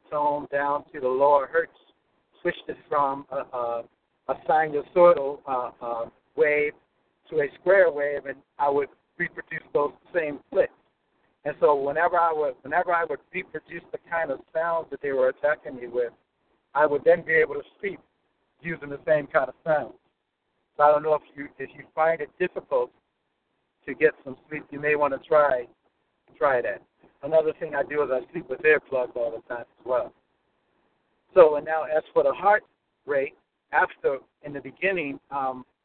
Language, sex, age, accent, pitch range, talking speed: English, male, 60-79, American, 135-185 Hz, 180 wpm